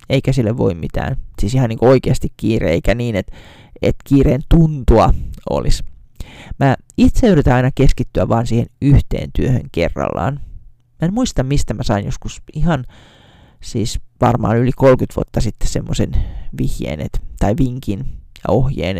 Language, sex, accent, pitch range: Finnish, male, native, 105-130 Hz